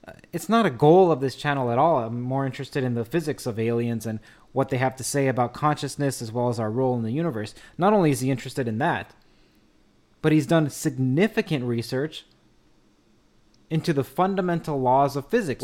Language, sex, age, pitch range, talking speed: English, male, 20-39, 130-150 Hz, 195 wpm